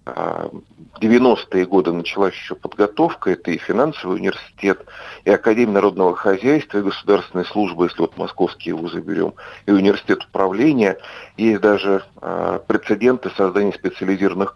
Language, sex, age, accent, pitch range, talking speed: Russian, male, 50-69, native, 100-125 Hz, 130 wpm